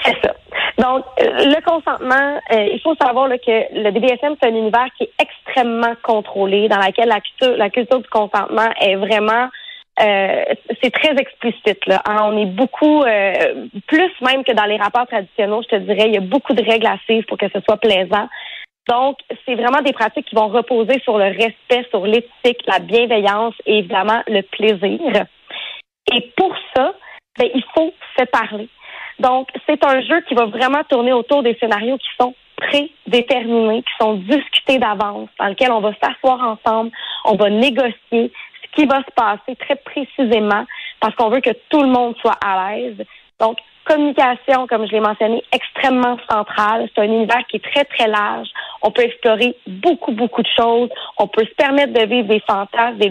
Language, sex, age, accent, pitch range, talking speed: French, female, 30-49, Canadian, 215-260 Hz, 190 wpm